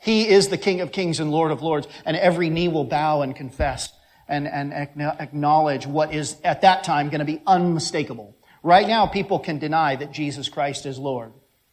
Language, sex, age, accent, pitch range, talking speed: English, male, 40-59, American, 140-175 Hz, 200 wpm